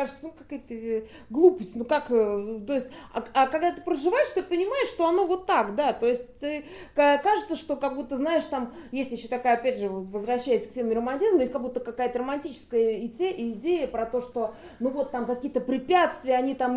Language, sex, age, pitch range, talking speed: Russian, female, 20-39, 235-285 Hz, 195 wpm